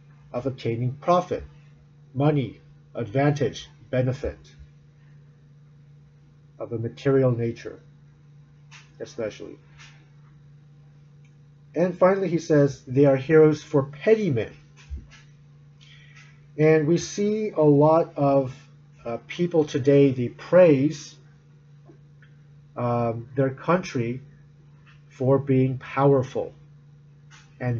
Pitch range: 135-145 Hz